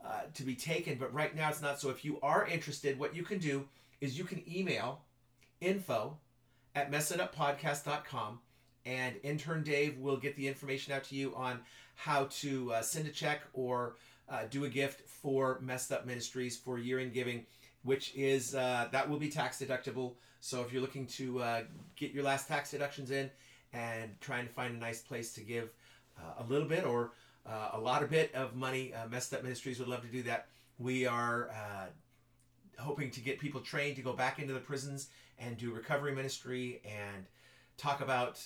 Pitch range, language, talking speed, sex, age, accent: 125-145 Hz, English, 195 wpm, male, 40-59, American